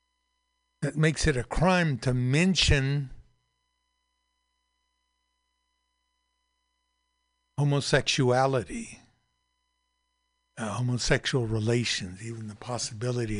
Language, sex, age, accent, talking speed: English, male, 60-79, American, 65 wpm